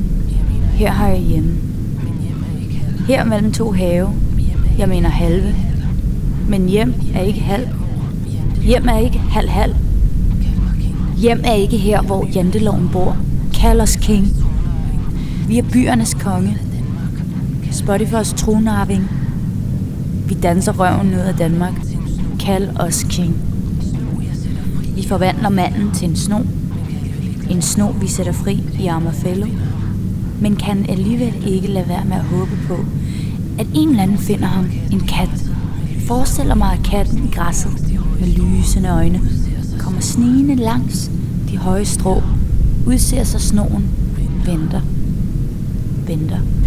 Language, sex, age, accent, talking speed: Danish, female, 20-39, native, 125 wpm